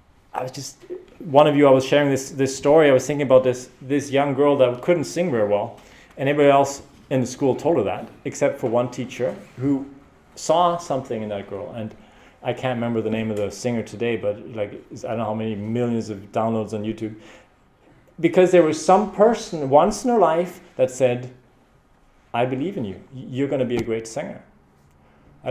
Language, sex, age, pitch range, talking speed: English, male, 30-49, 115-140 Hz, 210 wpm